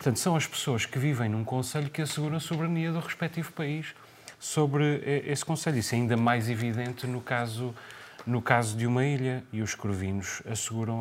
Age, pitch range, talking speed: 30-49, 110-145 Hz, 185 wpm